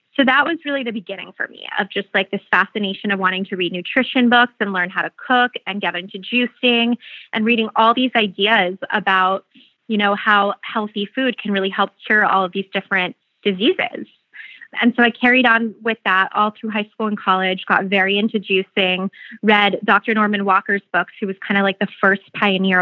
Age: 20-39